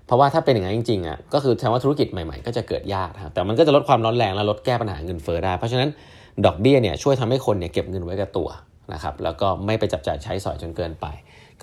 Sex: male